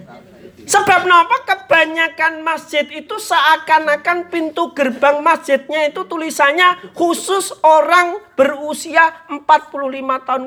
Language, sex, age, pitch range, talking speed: Indonesian, male, 40-59, 200-310 Hz, 90 wpm